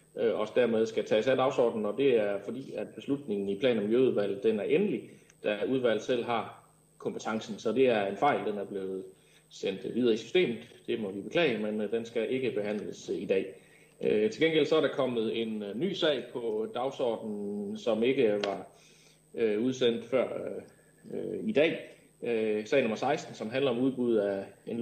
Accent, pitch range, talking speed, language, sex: native, 105-155 Hz, 180 wpm, Danish, male